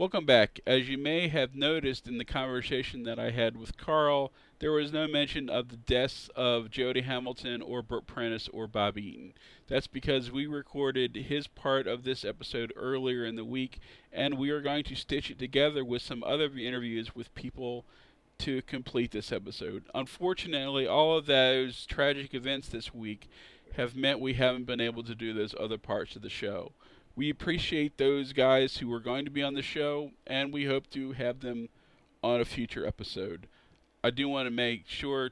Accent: American